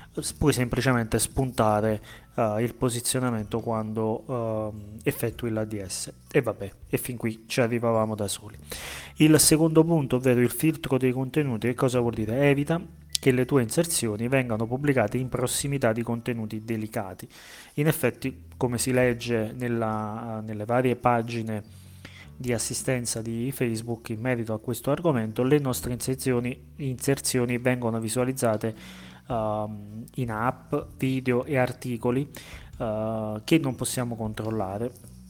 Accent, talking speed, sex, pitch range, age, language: native, 130 wpm, male, 110-130 Hz, 30-49, Italian